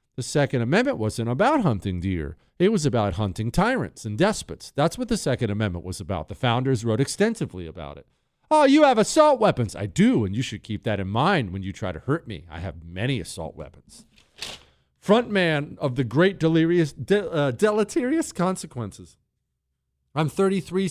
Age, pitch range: 40-59, 115-185 Hz